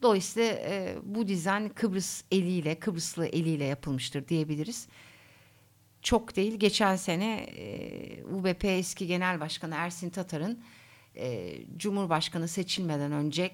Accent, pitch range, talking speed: native, 155-225 Hz, 105 wpm